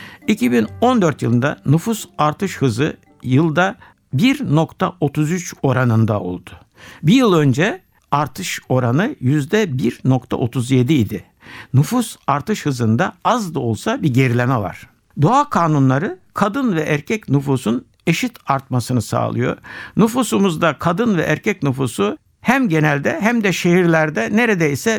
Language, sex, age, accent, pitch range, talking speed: Turkish, male, 60-79, native, 135-215 Hz, 110 wpm